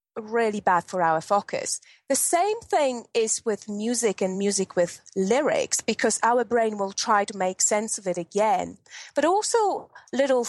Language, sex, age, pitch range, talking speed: English, female, 30-49, 195-260 Hz, 165 wpm